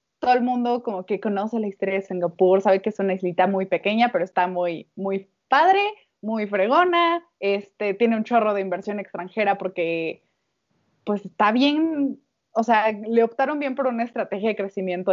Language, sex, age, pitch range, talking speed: Spanish, female, 20-39, 195-245 Hz, 180 wpm